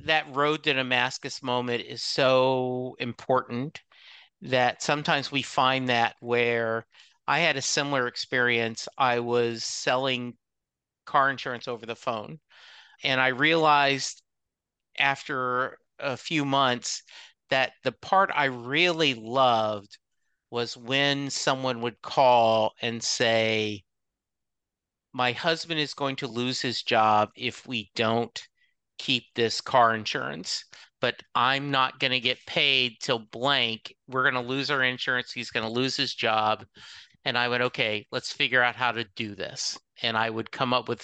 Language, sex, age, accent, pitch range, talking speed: English, male, 50-69, American, 115-140 Hz, 145 wpm